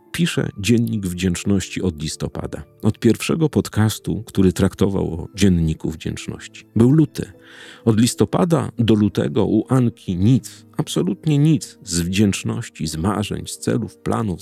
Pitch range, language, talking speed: 90-125 Hz, Polish, 130 wpm